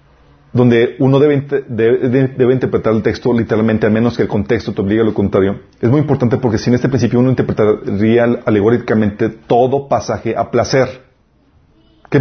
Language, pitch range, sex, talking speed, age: Spanish, 115-140 Hz, male, 160 wpm, 40-59